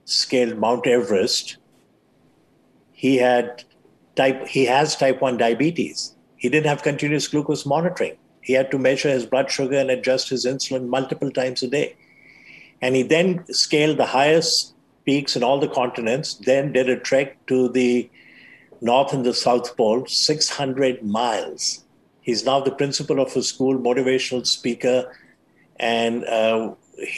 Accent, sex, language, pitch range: Indian, male, English, 120-135 Hz